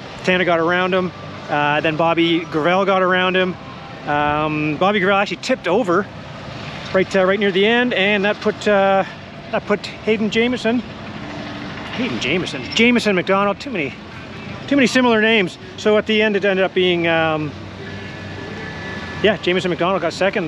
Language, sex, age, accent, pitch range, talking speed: English, male, 30-49, American, 165-205 Hz, 160 wpm